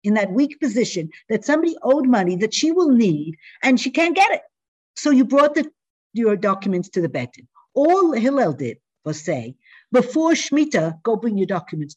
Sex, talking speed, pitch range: female, 185 wpm, 180-300 Hz